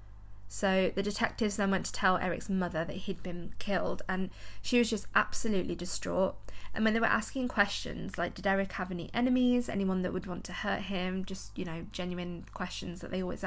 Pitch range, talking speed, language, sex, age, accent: 170-215 Hz, 205 wpm, English, female, 20-39, British